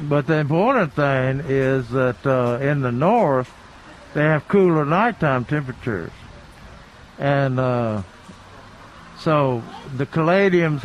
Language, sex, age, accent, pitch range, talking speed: English, male, 60-79, American, 125-165 Hz, 110 wpm